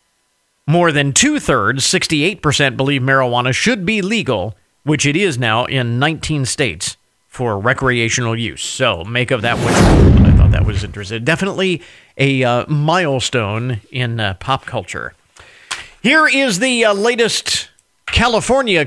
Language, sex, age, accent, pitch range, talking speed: English, male, 50-69, American, 135-210 Hz, 135 wpm